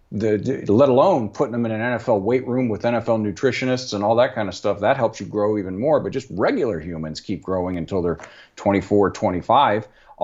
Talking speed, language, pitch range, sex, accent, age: 205 wpm, English, 105-135 Hz, male, American, 50-69